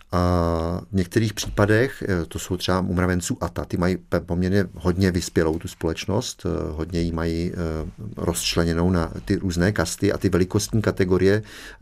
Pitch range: 85-105 Hz